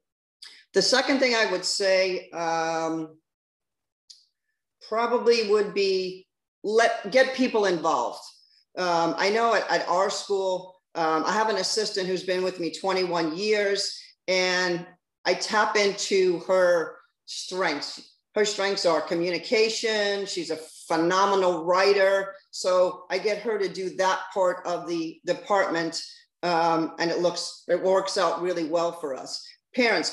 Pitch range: 165-200 Hz